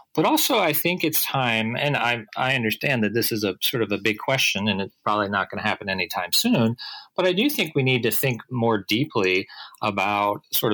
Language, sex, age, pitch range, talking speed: English, male, 40-59, 100-135 Hz, 225 wpm